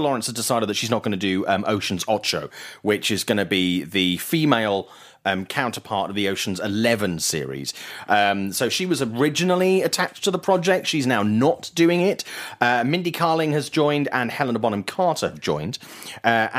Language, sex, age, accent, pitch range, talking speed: English, male, 30-49, British, 95-150 Hz, 190 wpm